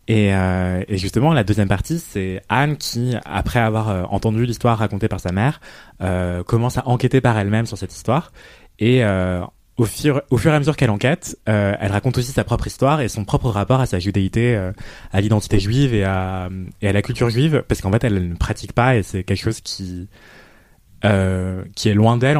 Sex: male